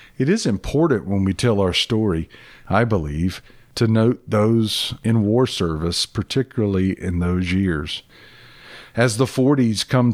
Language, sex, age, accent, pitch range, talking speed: English, male, 50-69, American, 90-115 Hz, 140 wpm